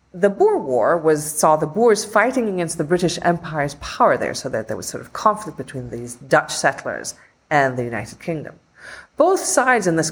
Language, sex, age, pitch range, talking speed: English, female, 40-59, 140-210 Hz, 195 wpm